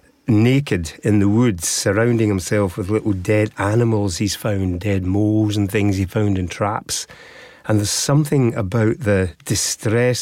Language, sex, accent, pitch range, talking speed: English, male, British, 100-120 Hz, 155 wpm